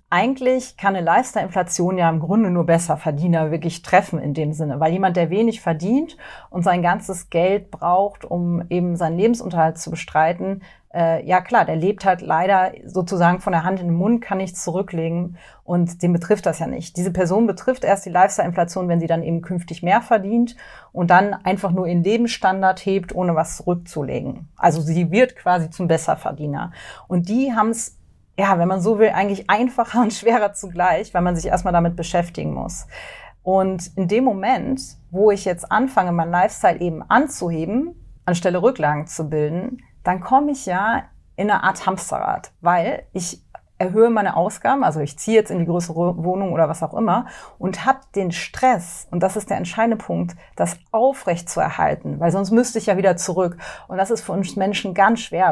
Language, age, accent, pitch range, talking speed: German, 30-49, German, 170-200 Hz, 185 wpm